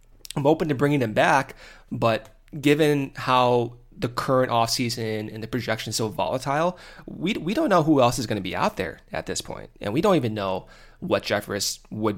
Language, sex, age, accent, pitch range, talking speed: English, male, 20-39, American, 110-145 Hz, 200 wpm